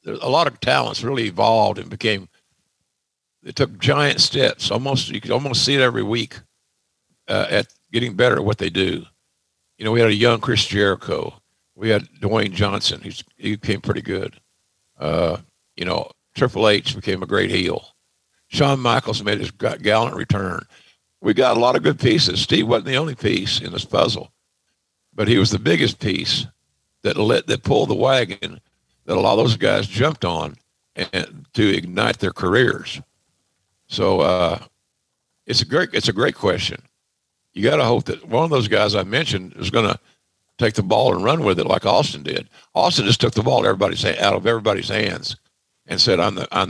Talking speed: 195 wpm